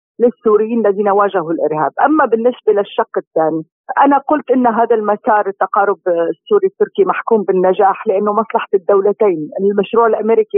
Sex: female